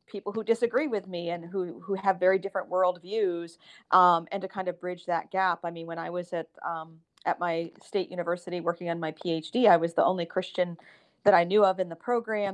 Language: English